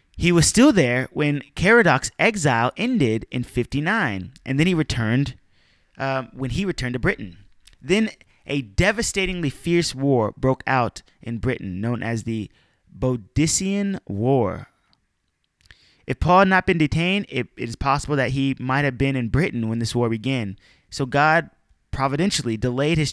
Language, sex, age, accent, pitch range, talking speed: English, male, 20-39, American, 120-165 Hz, 155 wpm